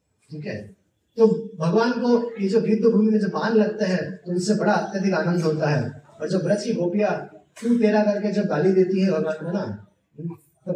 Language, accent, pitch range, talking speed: Hindi, native, 190-240 Hz, 205 wpm